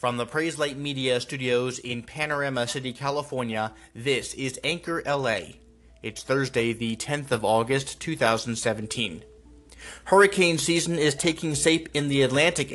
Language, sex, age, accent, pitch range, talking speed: English, male, 30-49, American, 115-145 Hz, 135 wpm